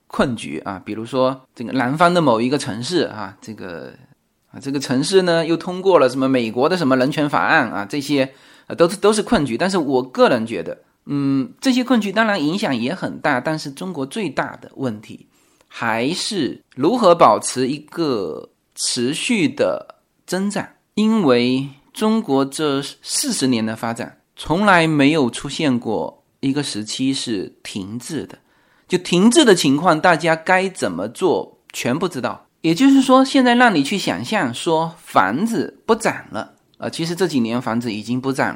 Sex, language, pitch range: male, Chinese, 125-190 Hz